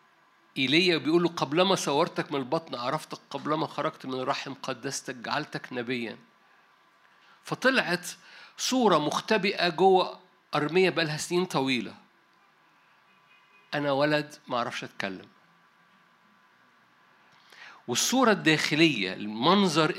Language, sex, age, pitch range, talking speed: Arabic, male, 50-69, 125-175 Hz, 95 wpm